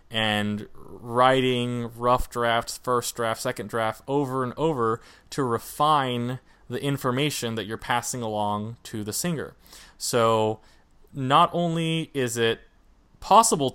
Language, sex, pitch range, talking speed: English, male, 110-135 Hz, 120 wpm